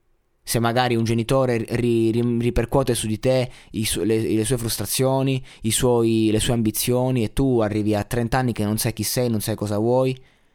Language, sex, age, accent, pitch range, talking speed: Italian, male, 20-39, native, 105-130 Hz, 205 wpm